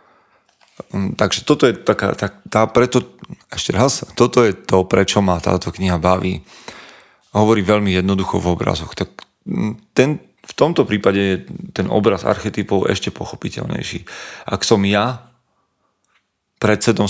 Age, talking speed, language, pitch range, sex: 30-49, 130 wpm, Slovak, 95-105 Hz, male